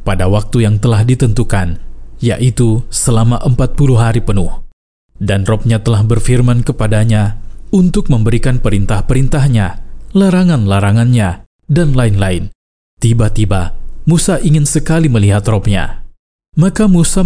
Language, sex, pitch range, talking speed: Indonesian, male, 105-130 Hz, 105 wpm